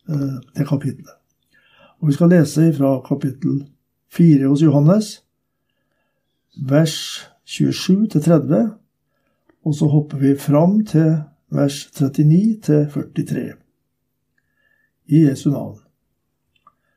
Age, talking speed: 60-79, 90 wpm